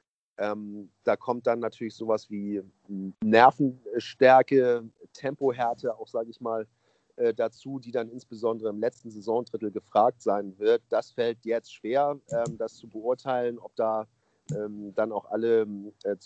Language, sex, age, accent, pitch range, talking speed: German, male, 40-59, German, 100-125 Hz, 145 wpm